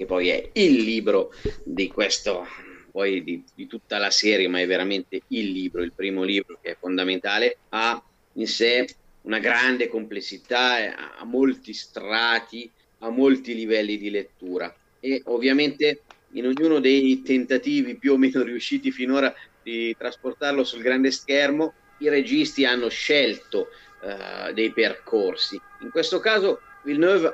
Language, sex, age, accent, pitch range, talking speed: Italian, male, 30-49, native, 115-165 Hz, 145 wpm